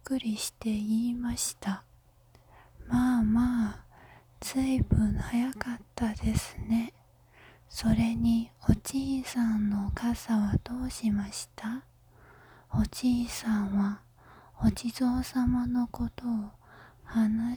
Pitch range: 205-250 Hz